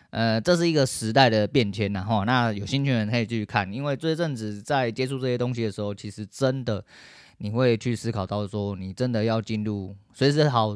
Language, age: Chinese, 20-39